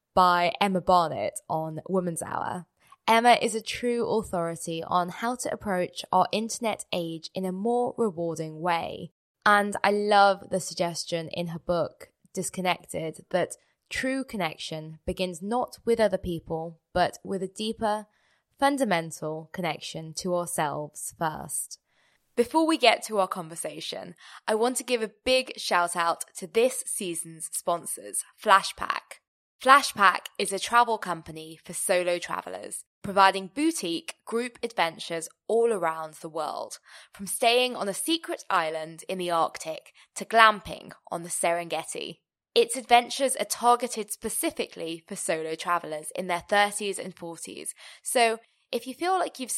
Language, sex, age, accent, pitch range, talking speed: English, female, 10-29, British, 170-230 Hz, 140 wpm